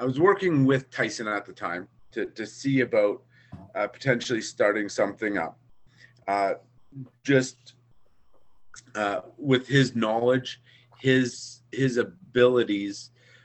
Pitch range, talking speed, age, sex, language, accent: 115-130 Hz, 115 wpm, 40-59, male, English, American